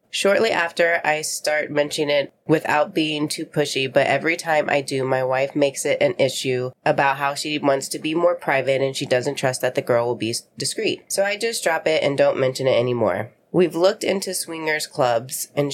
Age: 20-39